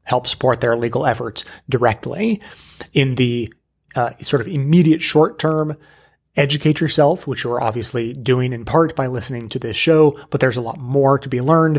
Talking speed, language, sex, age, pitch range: 180 wpm, English, male, 30-49, 120-145 Hz